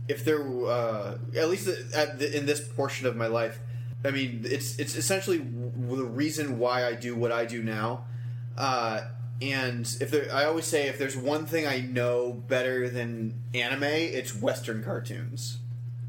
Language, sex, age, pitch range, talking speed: English, male, 20-39, 120-135 Hz, 175 wpm